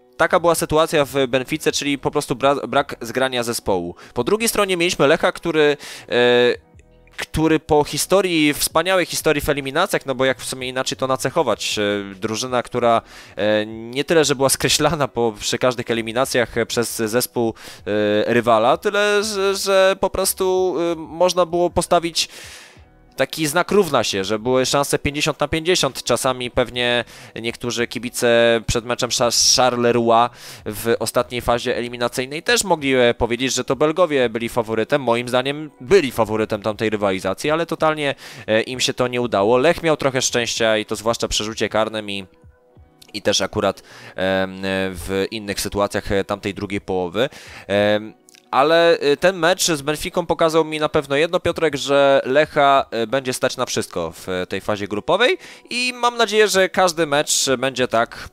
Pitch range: 110-155 Hz